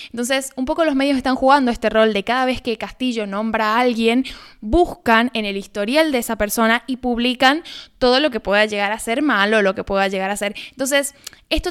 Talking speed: 215 wpm